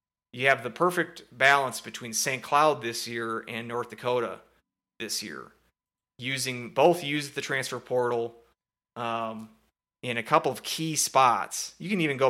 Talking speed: 155 wpm